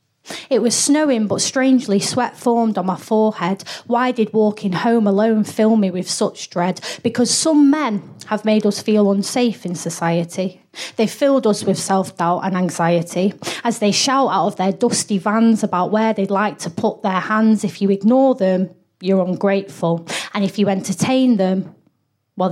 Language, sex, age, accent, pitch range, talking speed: English, female, 30-49, British, 190-225 Hz, 175 wpm